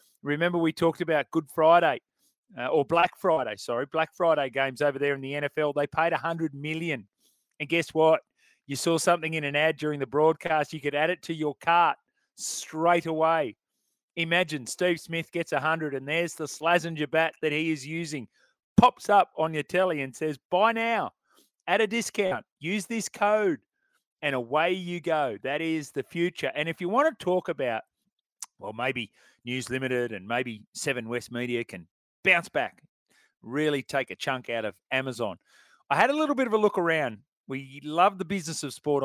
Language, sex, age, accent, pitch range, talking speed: English, male, 30-49, Australian, 140-175 Hz, 190 wpm